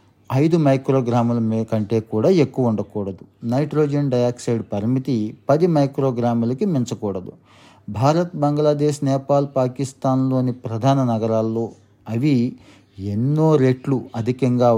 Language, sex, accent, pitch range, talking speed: Telugu, male, native, 115-135 Hz, 90 wpm